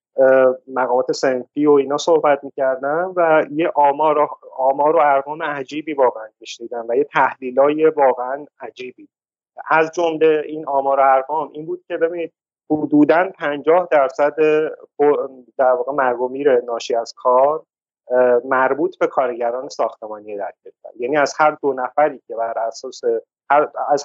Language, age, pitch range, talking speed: Persian, 30-49, 130-175 Hz, 135 wpm